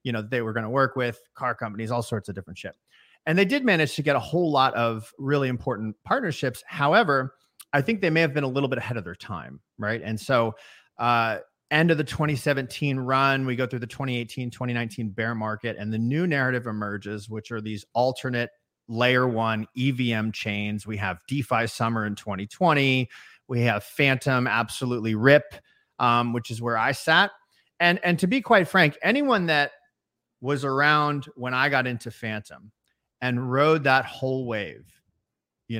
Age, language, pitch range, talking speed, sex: 30-49, English, 115-145 Hz, 185 wpm, male